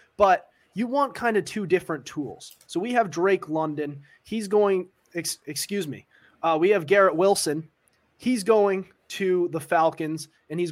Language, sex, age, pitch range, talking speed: English, male, 20-39, 155-195 Hz, 175 wpm